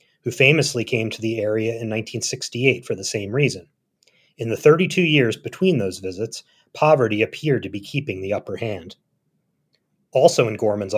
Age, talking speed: 30-49, 165 wpm